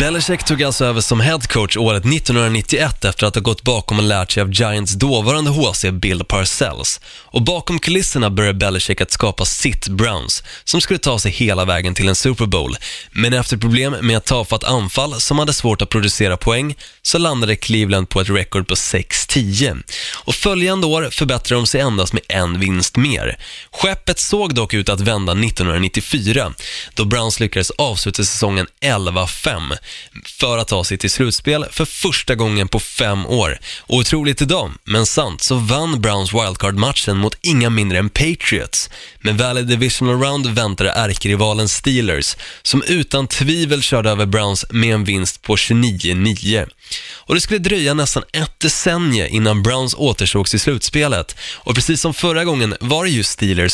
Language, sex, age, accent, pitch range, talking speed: Swedish, male, 20-39, native, 100-135 Hz, 165 wpm